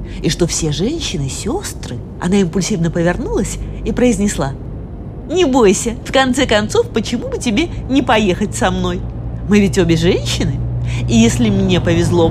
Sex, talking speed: female, 145 wpm